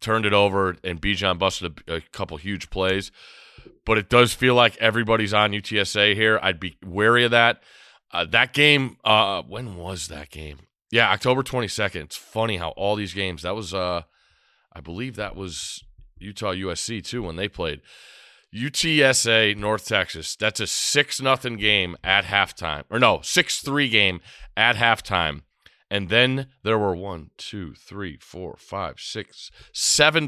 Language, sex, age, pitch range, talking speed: English, male, 30-49, 95-115 Hz, 165 wpm